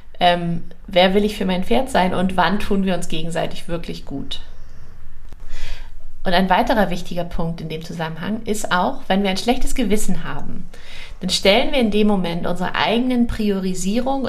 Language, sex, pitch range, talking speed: German, female, 175-215 Hz, 170 wpm